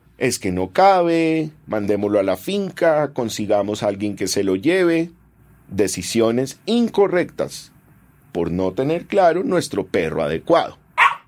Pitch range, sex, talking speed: 115-185 Hz, male, 130 wpm